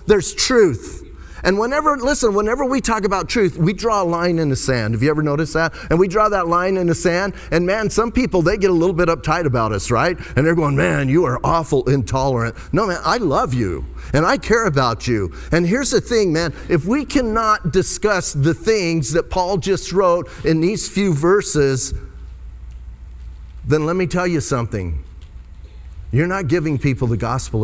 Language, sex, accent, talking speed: English, male, American, 200 wpm